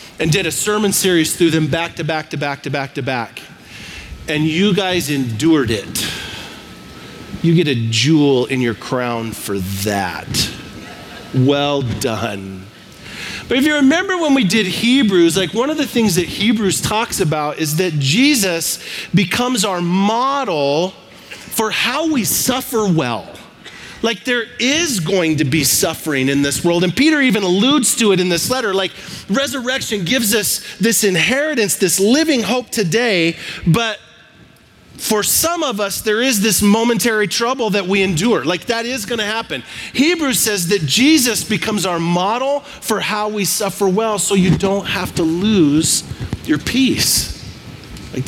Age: 40-59